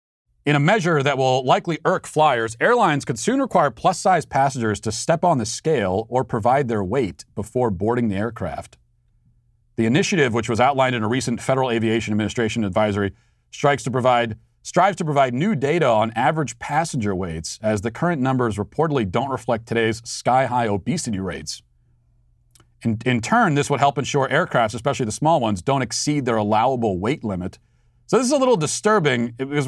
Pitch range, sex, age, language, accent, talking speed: 110-135 Hz, male, 40-59, English, American, 170 wpm